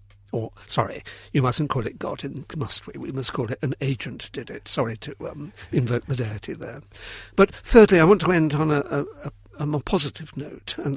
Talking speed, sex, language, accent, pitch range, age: 210 wpm, male, English, British, 100-150 Hz, 60-79